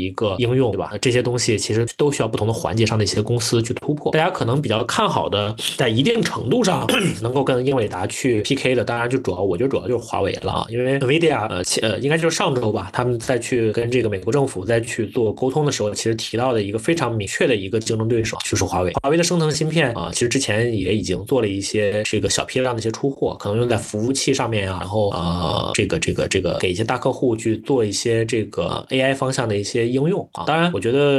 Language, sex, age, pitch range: English, male, 20-39, 105-130 Hz